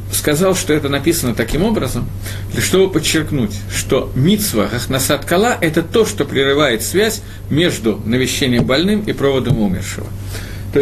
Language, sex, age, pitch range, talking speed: Russian, male, 50-69, 100-165 Hz, 135 wpm